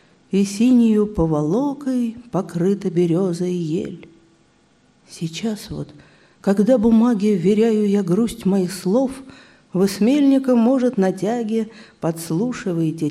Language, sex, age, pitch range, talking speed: Russian, female, 50-69, 165-235 Hz, 90 wpm